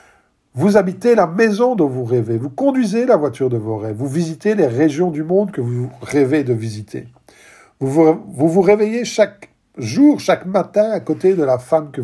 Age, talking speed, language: 50-69, 200 wpm, French